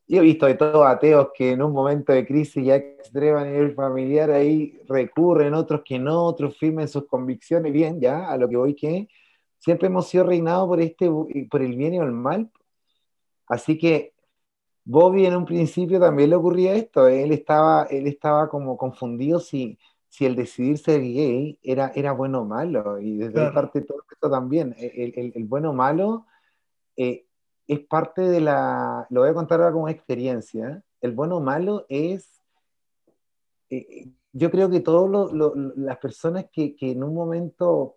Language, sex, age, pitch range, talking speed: Spanish, male, 30-49, 125-160 Hz, 180 wpm